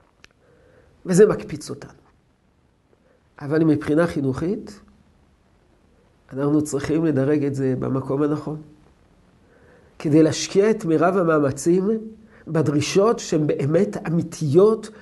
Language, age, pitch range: Hebrew, 50-69, 140-180 Hz